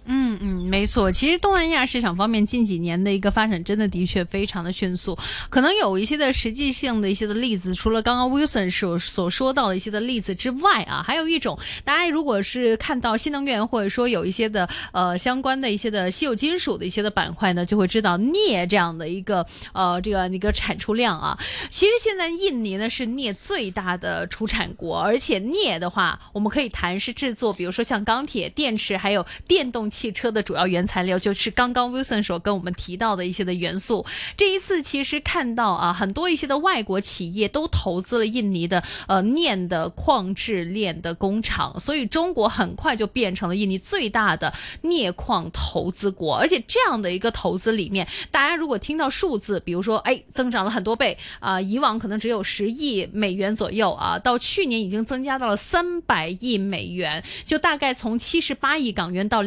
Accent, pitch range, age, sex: native, 190-260 Hz, 20-39, female